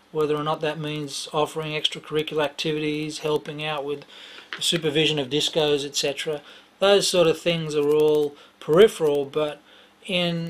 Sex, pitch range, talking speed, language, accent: male, 150-170 Hz, 135 wpm, English, Australian